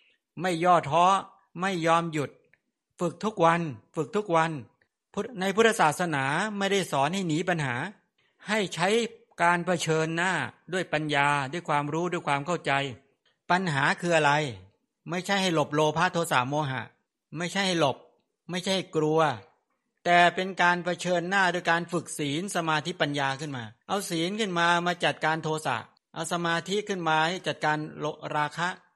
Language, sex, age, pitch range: English, male, 60-79, 155-185 Hz